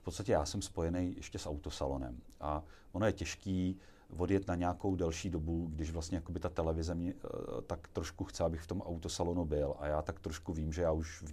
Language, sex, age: Czech, male, 30-49